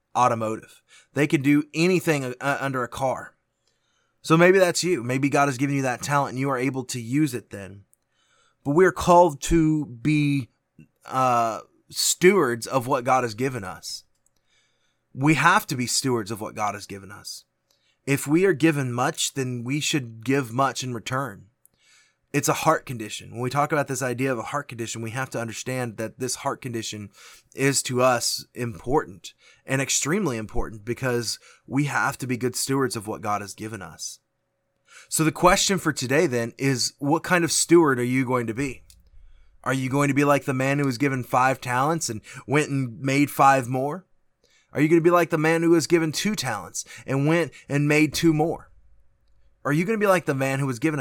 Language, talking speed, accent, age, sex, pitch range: English, 200 wpm, American, 20-39, male, 120-150 Hz